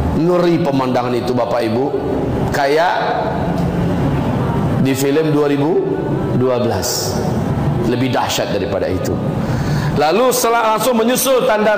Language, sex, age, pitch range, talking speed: Indonesian, male, 40-59, 135-180 Hz, 90 wpm